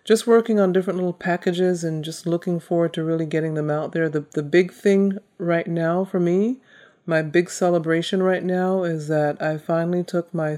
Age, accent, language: 40-59, American, English